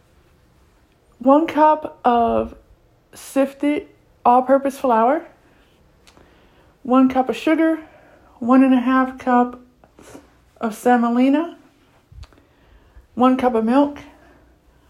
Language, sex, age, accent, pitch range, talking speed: English, female, 50-69, American, 230-265 Hz, 90 wpm